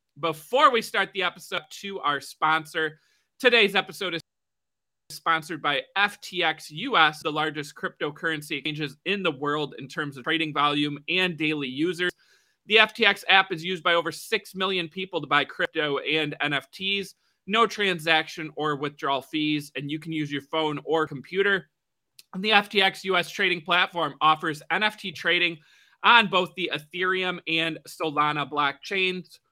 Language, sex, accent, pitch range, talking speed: English, male, American, 150-185 Hz, 150 wpm